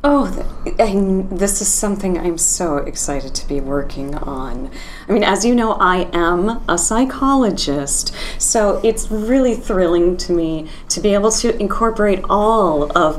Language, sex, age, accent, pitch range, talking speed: English, female, 30-49, American, 175-270 Hz, 150 wpm